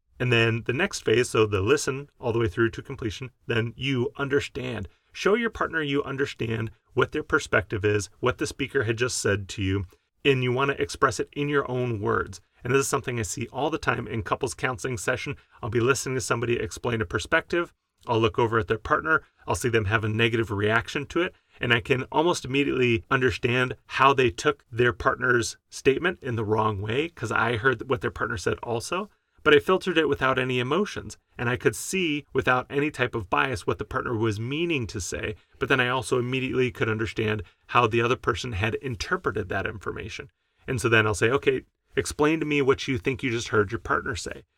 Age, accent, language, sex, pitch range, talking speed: 30-49, American, English, male, 110-140 Hz, 215 wpm